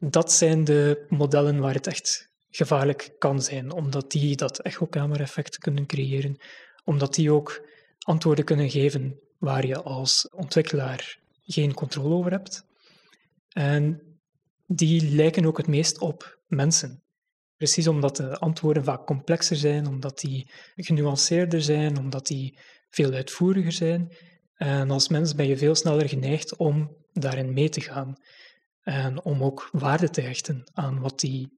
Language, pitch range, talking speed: Dutch, 140-170 Hz, 145 wpm